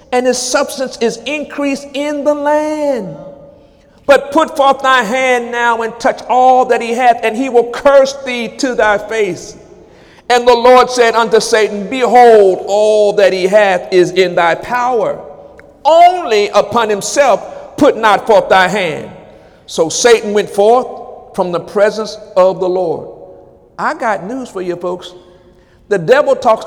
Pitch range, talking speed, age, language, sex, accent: 210-275 Hz, 155 wpm, 50-69, English, male, American